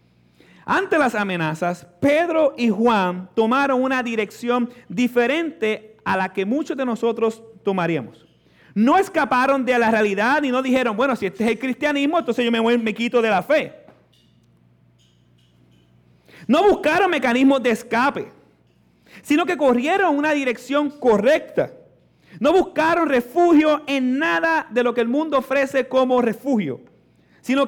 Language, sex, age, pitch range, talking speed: Spanish, male, 40-59, 155-255 Hz, 140 wpm